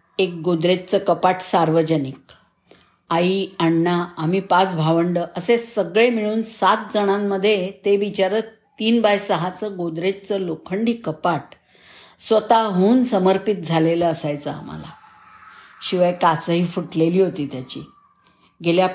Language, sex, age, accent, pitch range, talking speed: Marathi, female, 50-69, native, 170-225 Hz, 105 wpm